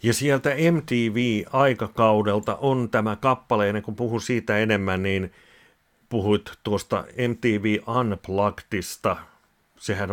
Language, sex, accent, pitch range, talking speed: Finnish, male, native, 100-125 Hz, 100 wpm